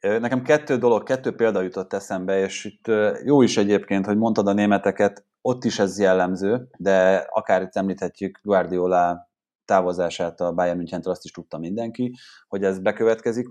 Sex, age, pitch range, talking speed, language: male, 30-49, 90-115 Hz, 160 wpm, Hungarian